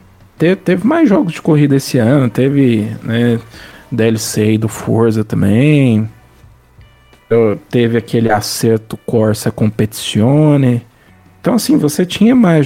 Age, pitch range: 40-59, 110-155 Hz